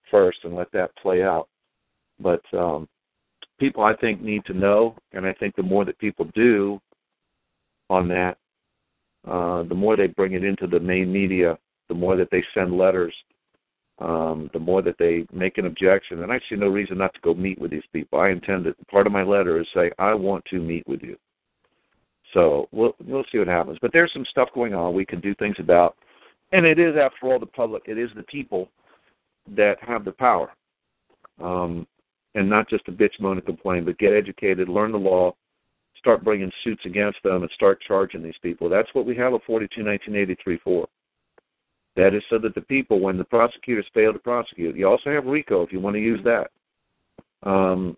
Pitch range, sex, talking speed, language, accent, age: 90-115 Hz, male, 205 wpm, English, American, 50-69